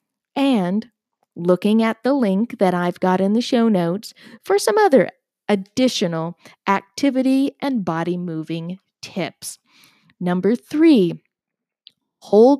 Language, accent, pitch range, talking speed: English, American, 180-245 Hz, 115 wpm